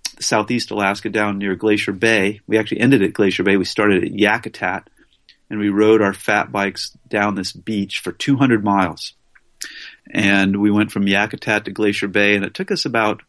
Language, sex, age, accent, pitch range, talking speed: English, male, 40-59, American, 100-115 Hz, 185 wpm